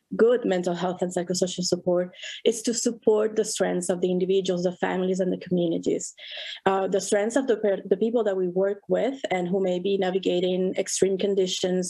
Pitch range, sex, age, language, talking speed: 185-220 Hz, female, 30-49, English, 185 wpm